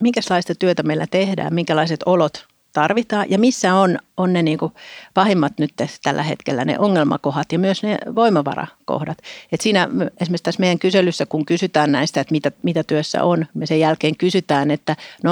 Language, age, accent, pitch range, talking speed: Finnish, 60-79, native, 155-190 Hz, 170 wpm